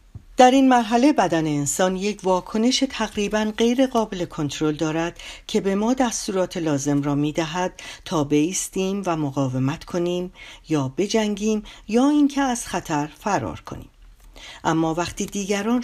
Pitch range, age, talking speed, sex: 150-210 Hz, 50-69, 135 wpm, female